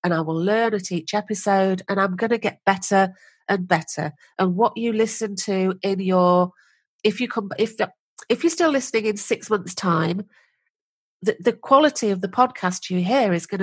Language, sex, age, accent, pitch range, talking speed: English, female, 40-59, British, 180-230 Hz, 195 wpm